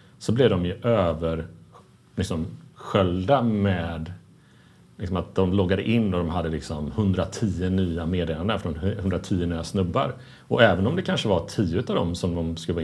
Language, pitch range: Swedish, 85-110 Hz